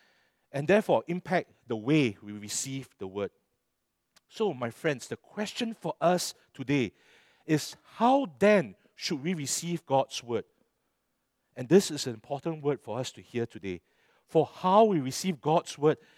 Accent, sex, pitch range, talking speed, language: Malaysian, male, 120-170 Hz, 155 wpm, English